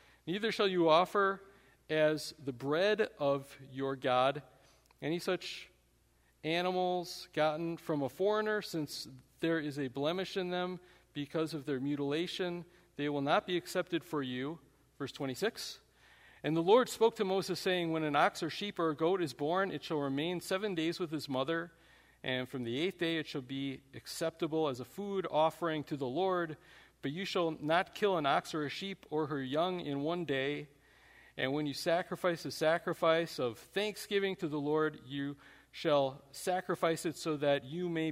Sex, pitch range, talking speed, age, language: male, 140-180 Hz, 180 wpm, 40-59, English